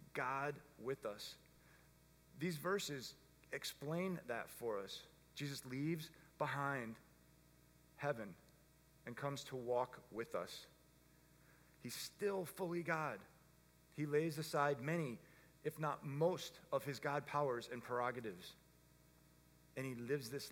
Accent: American